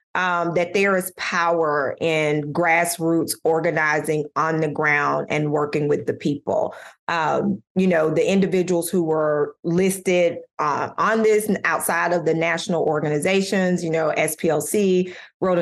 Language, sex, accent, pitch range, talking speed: English, female, American, 160-190 Hz, 140 wpm